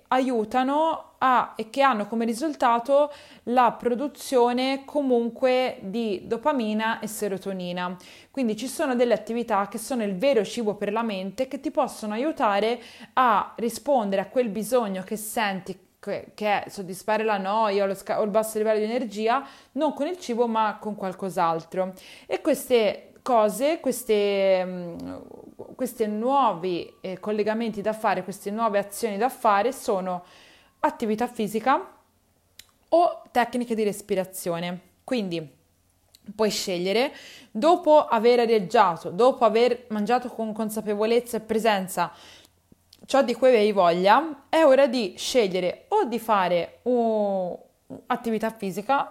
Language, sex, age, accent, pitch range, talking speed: Italian, female, 20-39, native, 200-255 Hz, 135 wpm